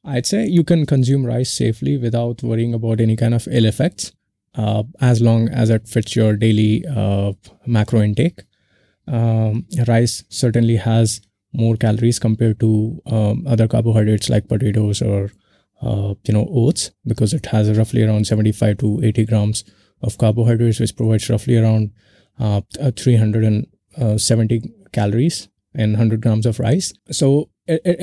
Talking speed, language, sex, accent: 150 wpm, Marathi, male, native